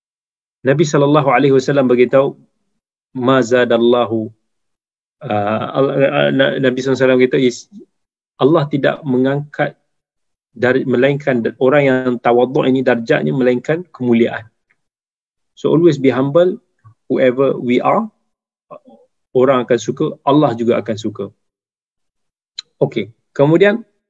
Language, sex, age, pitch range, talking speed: Malay, male, 20-39, 120-155 Hz, 90 wpm